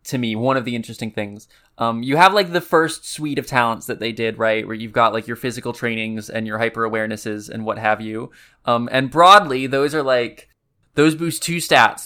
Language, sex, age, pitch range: English, male, 20-39, 110-130 Hz